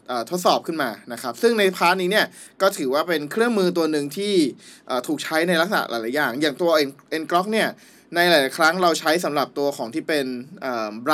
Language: Thai